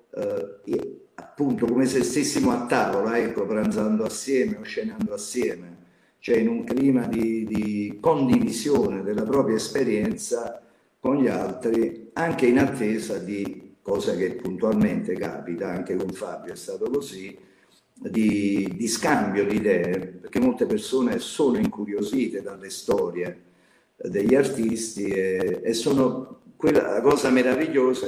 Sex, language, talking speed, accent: male, Italian, 135 wpm, native